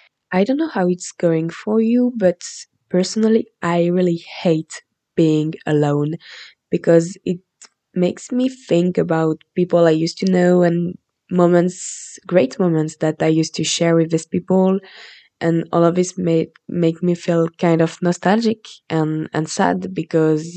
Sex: female